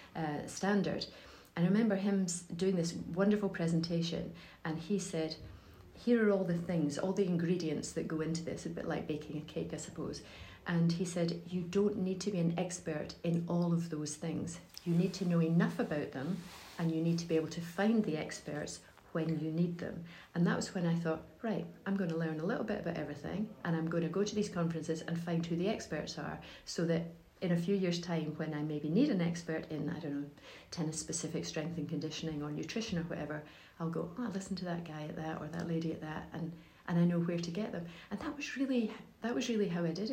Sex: female